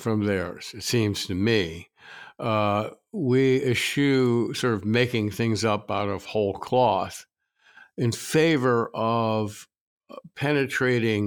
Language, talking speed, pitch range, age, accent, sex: English, 115 wpm, 105-125 Hz, 50-69, American, male